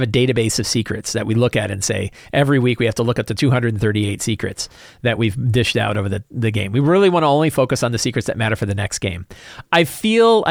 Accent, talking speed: American, 255 wpm